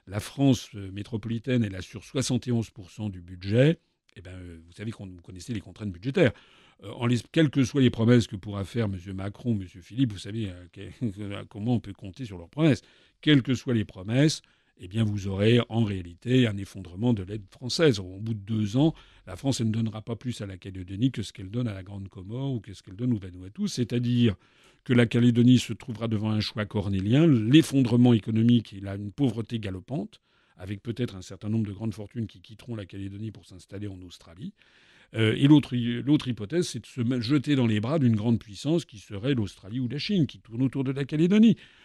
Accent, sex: French, male